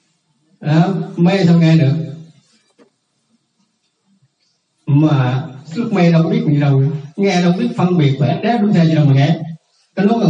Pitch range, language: 155-205 Hz, Vietnamese